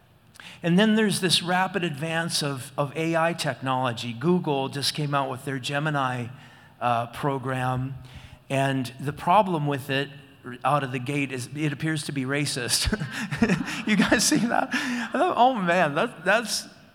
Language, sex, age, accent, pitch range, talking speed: English, male, 40-59, American, 140-175 Hz, 150 wpm